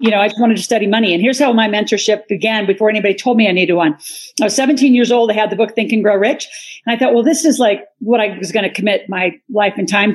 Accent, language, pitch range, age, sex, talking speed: American, English, 205-255 Hz, 50-69, female, 300 wpm